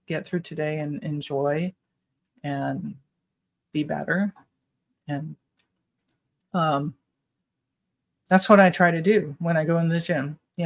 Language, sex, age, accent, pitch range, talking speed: English, female, 30-49, American, 155-185 Hz, 130 wpm